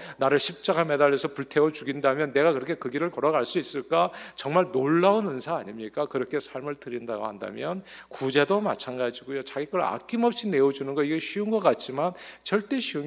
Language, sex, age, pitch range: Korean, male, 40-59, 125-165 Hz